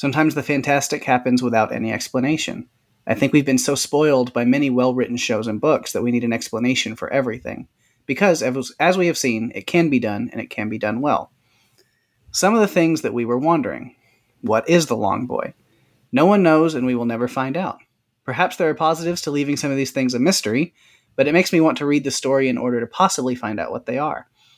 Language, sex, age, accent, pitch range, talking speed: English, male, 30-49, American, 125-155 Hz, 225 wpm